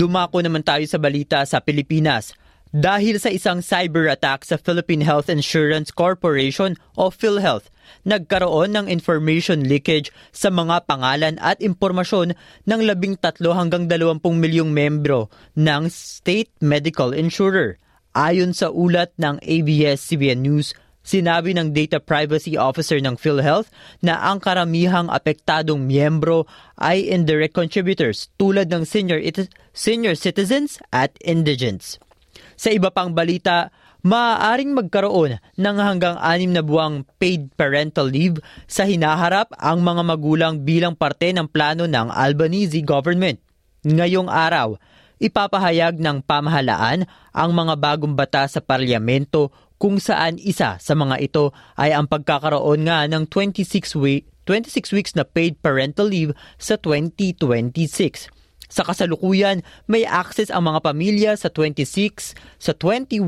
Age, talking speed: 20-39, 125 wpm